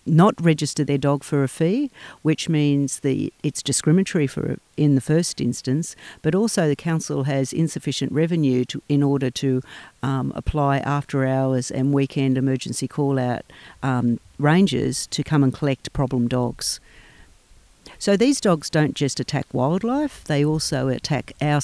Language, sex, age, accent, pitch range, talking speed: English, female, 50-69, Australian, 130-155 Hz, 155 wpm